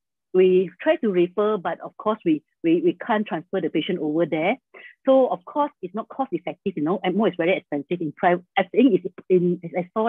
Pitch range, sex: 165-230 Hz, female